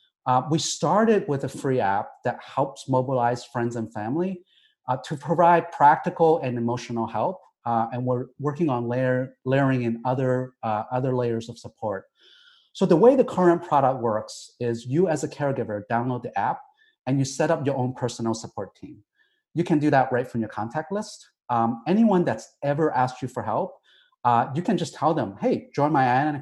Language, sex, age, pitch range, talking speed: English, male, 30-49, 120-165 Hz, 190 wpm